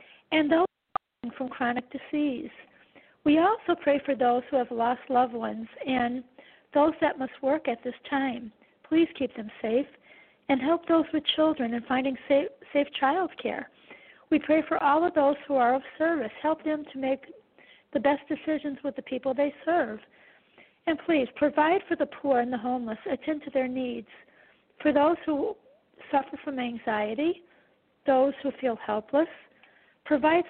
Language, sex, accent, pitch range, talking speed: English, female, American, 250-300 Hz, 165 wpm